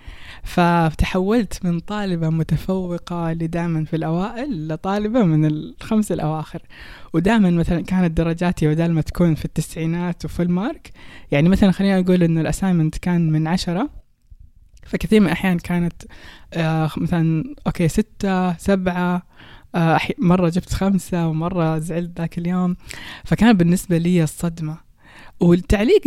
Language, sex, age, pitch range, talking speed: Persian, female, 20-39, 165-195 Hz, 115 wpm